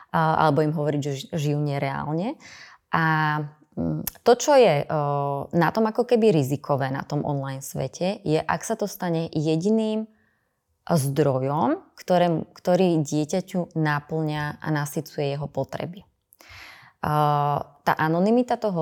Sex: female